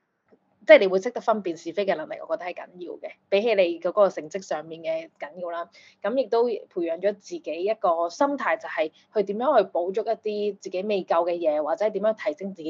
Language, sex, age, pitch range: Chinese, female, 20-39, 170-245 Hz